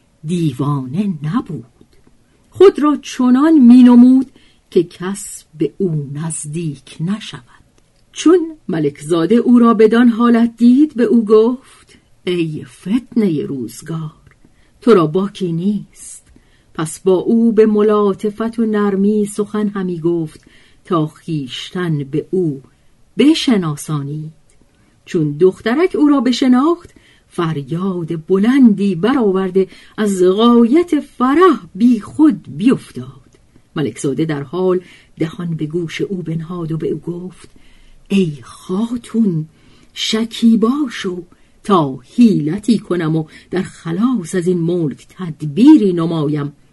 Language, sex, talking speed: Persian, female, 115 wpm